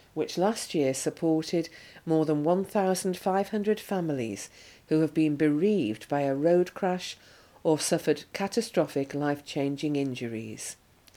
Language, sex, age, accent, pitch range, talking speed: English, female, 50-69, British, 145-185 Hz, 120 wpm